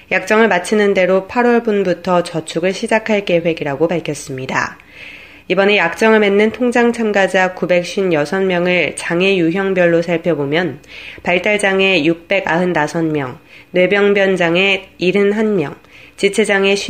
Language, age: Korean, 20-39